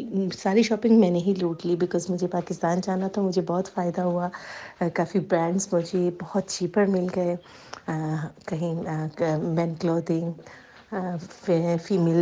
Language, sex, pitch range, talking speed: Urdu, female, 175-205 Hz, 140 wpm